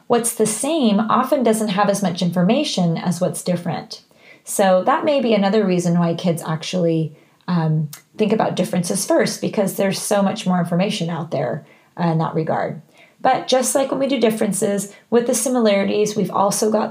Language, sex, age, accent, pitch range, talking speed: English, female, 30-49, American, 175-210 Hz, 180 wpm